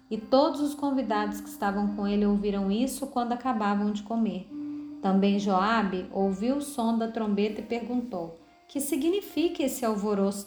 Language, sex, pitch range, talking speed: Portuguese, female, 195-260 Hz, 155 wpm